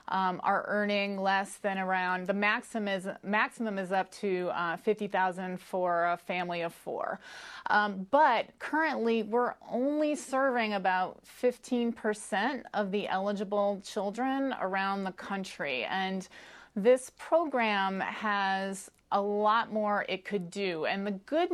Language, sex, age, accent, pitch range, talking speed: English, female, 30-49, American, 195-235 Hz, 135 wpm